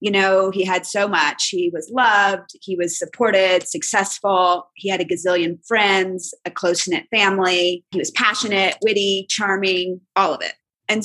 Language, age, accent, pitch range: English, 30-49, American, 190-235 Hz